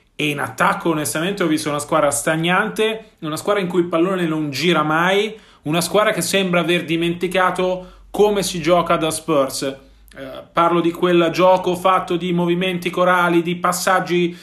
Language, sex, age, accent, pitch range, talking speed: Italian, male, 30-49, native, 165-185 Hz, 165 wpm